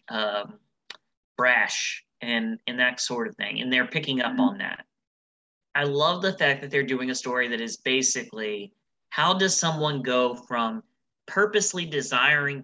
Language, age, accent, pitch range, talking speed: English, 30-49, American, 115-190 Hz, 155 wpm